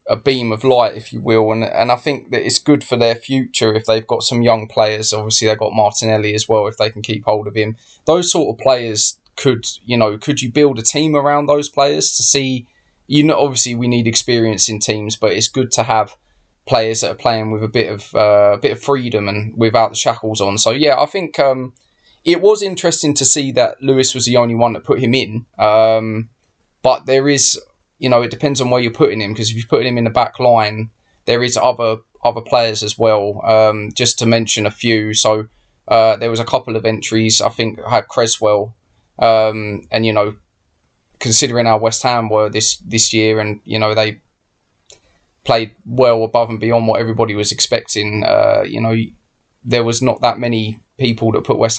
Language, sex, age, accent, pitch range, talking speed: English, male, 20-39, British, 110-125 Hz, 220 wpm